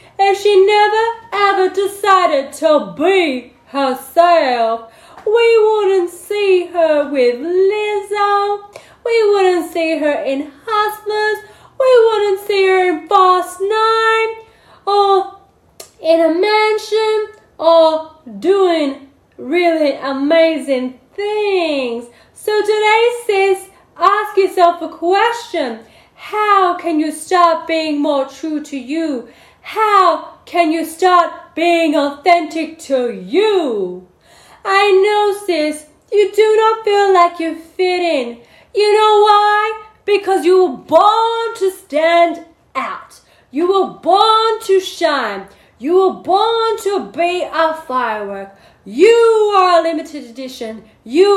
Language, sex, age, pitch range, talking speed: English, female, 10-29, 305-405 Hz, 115 wpm